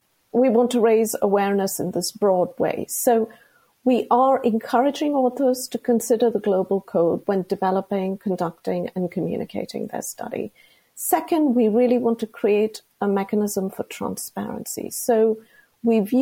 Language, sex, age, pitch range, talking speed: English, female, 50-69, 210-255 Hz, 140 wpm